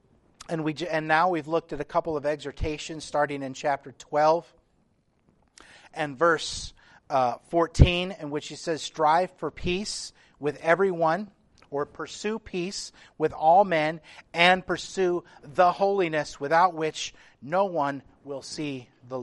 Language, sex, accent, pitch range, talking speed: English, male, American, 145-175 Hz, 140 wpm